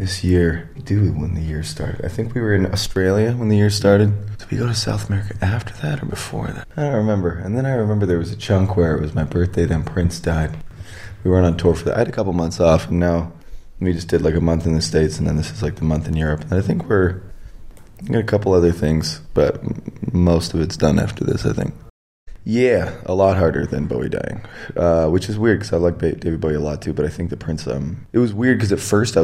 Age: 20-39